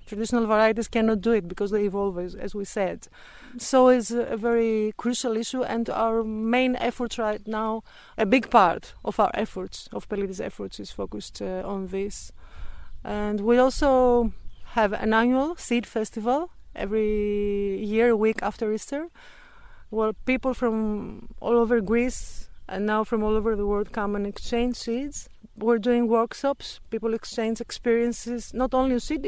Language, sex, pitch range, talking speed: English, female, 210-245 Hz, 160 wpm